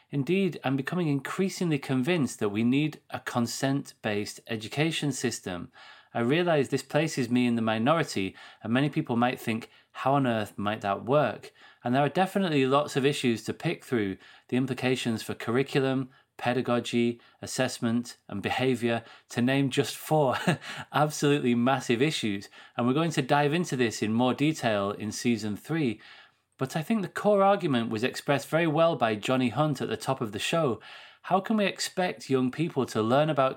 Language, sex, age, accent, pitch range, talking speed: English, male, 30-49, British, 115-145 Hz, 175 wpm